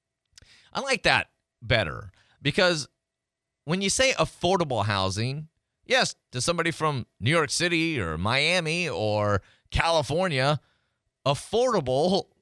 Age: 30-49